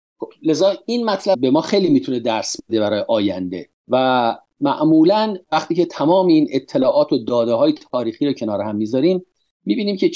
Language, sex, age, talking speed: Persian, male, 50-69, 160 wpm